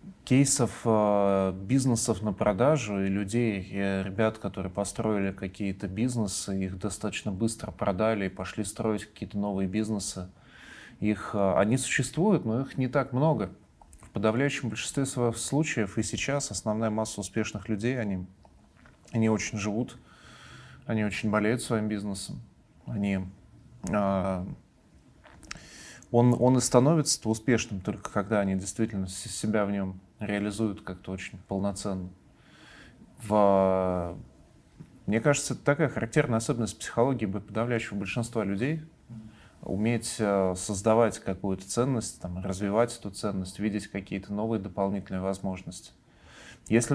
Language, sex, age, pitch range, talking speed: Russian, male, 20-39, 100-115 Hz, 110 wpm